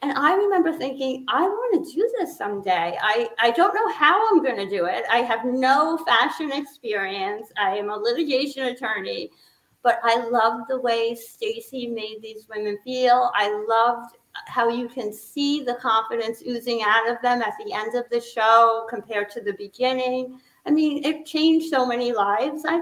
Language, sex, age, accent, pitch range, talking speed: English, female, 40-59, American, 230-295 Hz, 185 wpm